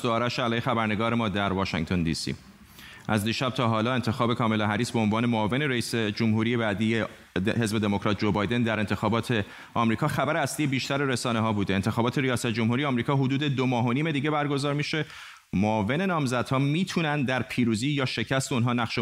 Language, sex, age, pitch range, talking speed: Persian, male, 30-49, 110-145 Hz, 165 wpm